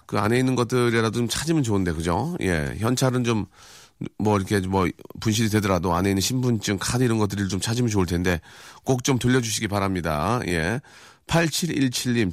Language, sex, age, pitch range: Korean, male, 40-59, 95-130 Hz